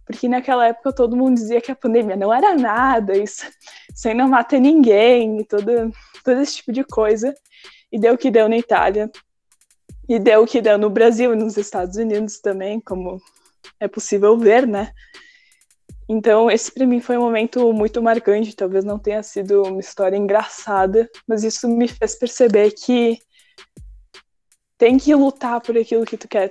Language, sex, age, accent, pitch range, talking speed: Portuguese, female, 10-29, Brazilian, 205-245 Hz, 175 wpm